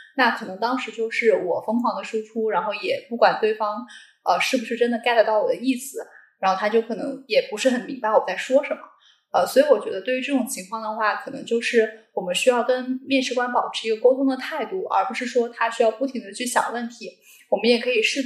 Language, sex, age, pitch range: Chinese, female, 10-29, 225-260 Hz